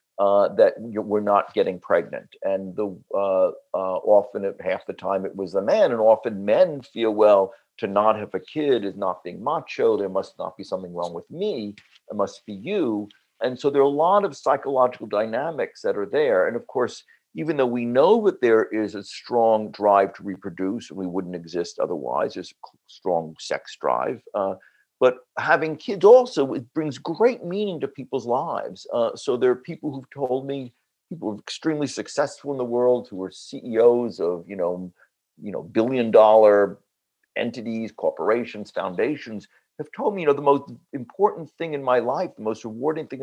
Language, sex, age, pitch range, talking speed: English, male, 50-69, 105-160 Hz, 190 wpm